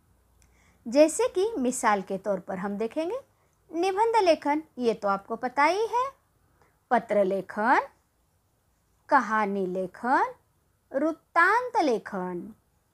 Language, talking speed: Marathi, 100 wpm